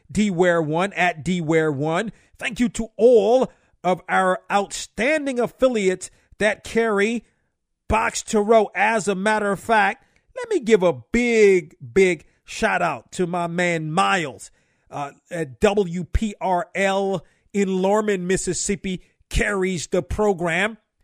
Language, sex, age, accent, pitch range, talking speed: English, male, 40-59, American, 175-210 Hz, 125 wpm